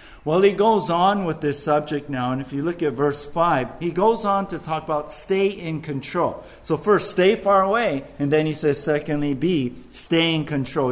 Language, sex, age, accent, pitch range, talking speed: English, male, 50-69, American, 145-195 Hz, 210 wpm